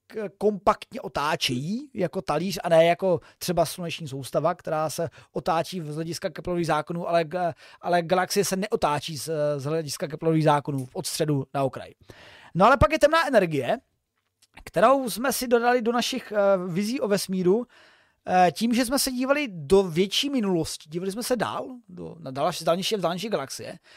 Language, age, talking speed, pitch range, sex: Czech, 30-49, 150 wpm, 165-220 Hz, male